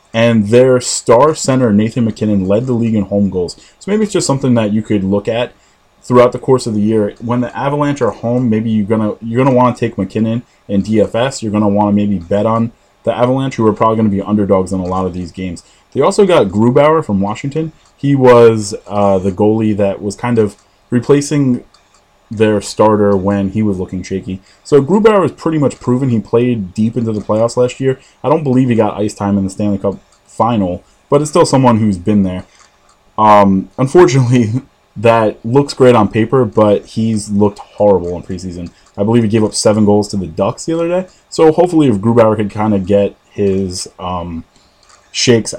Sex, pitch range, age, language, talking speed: male, 100-125 Hz, 20-39, English, 210 wpm